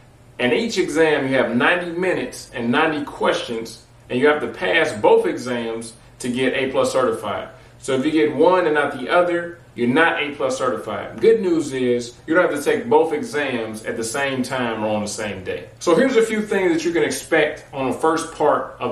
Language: English